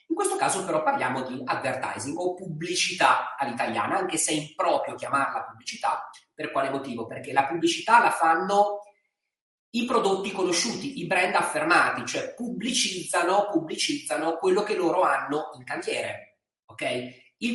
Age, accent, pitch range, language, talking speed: 30-49, native, 145-235 Hz, Italian, 140 wpm